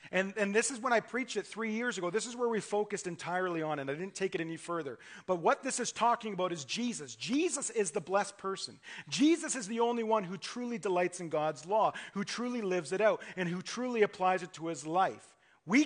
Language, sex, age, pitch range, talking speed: English, male, 40-59, 170-235 Hz, 240 wpm